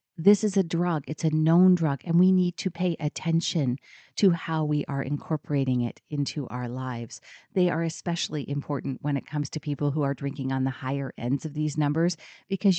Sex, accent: female, American